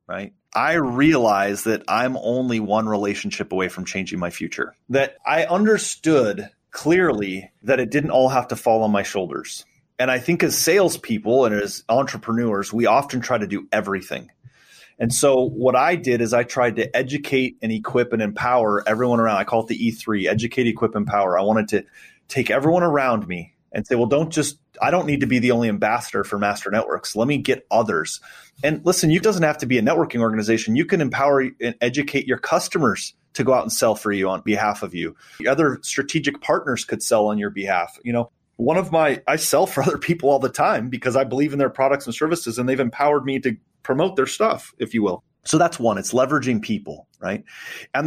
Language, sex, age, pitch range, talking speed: English, male, 30-49, 115-150 Hz, 210 wpm